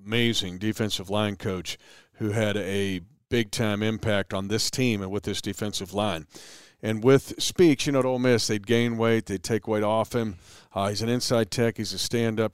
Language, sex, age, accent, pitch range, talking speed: English, male, 40-59, American, 105-120 Hz, 195 wpm